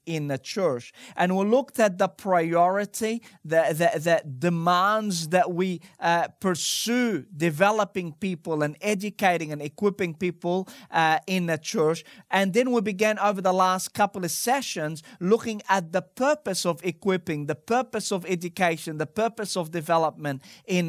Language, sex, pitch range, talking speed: English, male, 175-220 Hz, 150 wpm